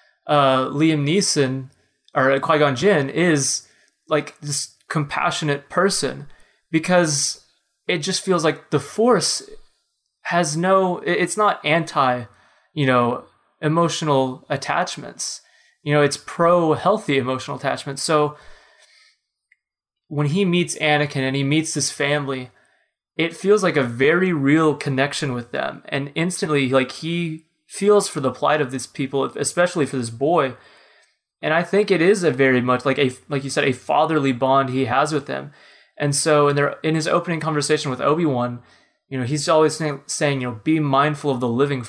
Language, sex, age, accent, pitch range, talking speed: English, male, 20-39, American, 135-160 Hz, 160 wpm